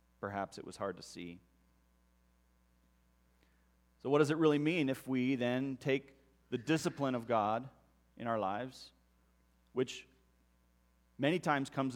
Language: English